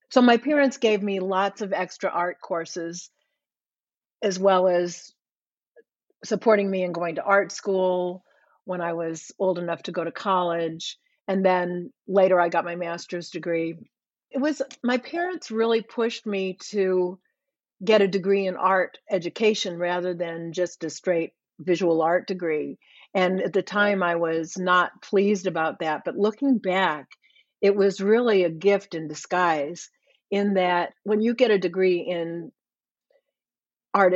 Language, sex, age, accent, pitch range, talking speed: English, female, 50-69, American, 175-215 Hz, 155 wpm